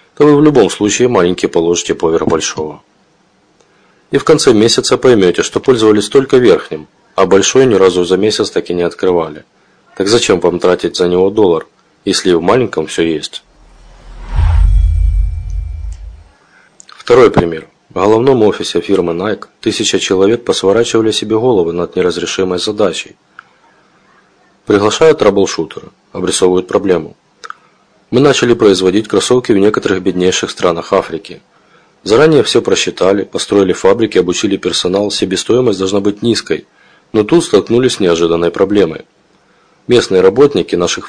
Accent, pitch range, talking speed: native, 85-140 Hz, 130 wpm